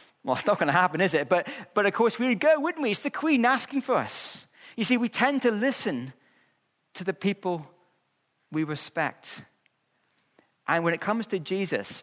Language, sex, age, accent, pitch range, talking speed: English, male, 40-59, British, 150-200 Hz, 200 wpm